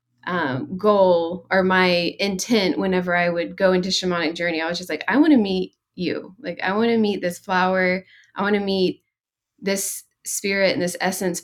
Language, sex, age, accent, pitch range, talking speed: English, female, 20-39, American, 170-195 Hz, 195 wpm